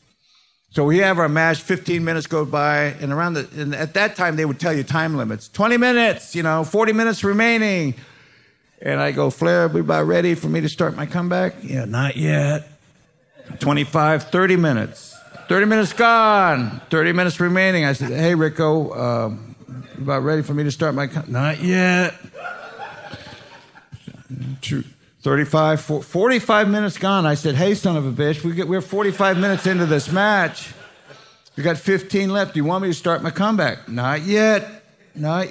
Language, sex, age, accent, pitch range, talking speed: English, male, 50-69, American, 135-185 Hz, 180 wpm